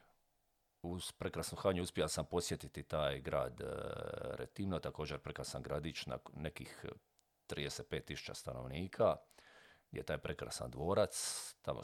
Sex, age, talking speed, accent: male, 50-69, 105 wpm, native